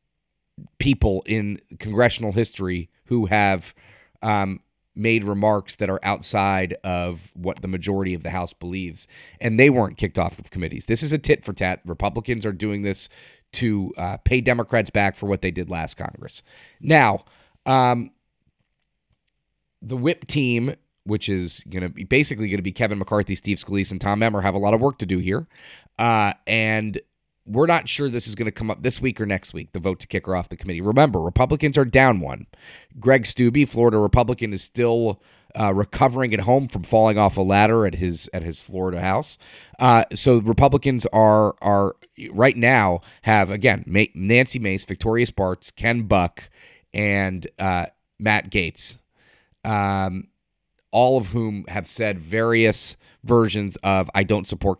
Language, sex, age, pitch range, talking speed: English, male, 30-49, 95-115 Hz, 175 wpm